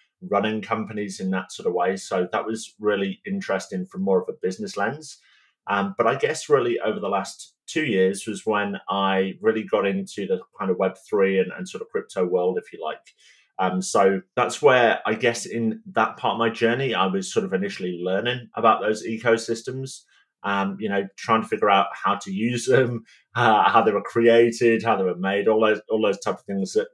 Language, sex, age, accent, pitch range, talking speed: English, male, 30-49, British, 95-120 Hz, 215 wpm